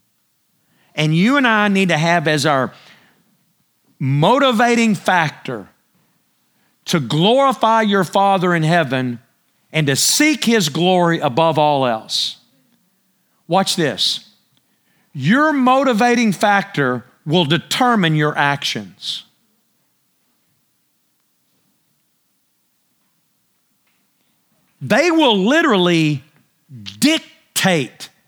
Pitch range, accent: 155-220 Hz, American